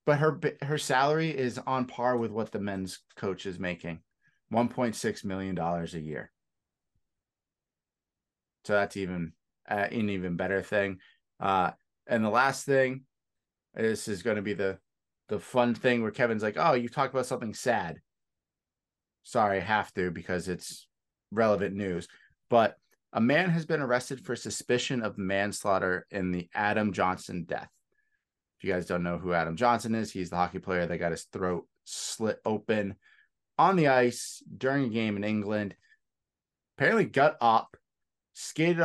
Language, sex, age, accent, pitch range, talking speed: English, male, 30-49, American, 95-120 Hz, 160 wpm